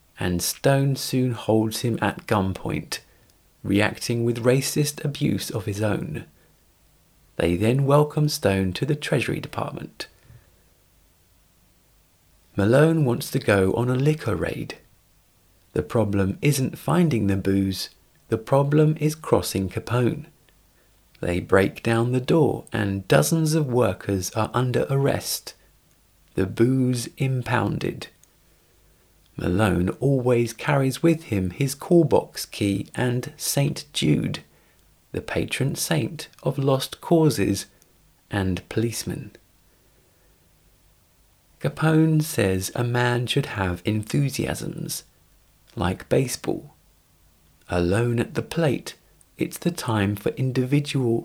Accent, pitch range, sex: British, 95-140 Hz, male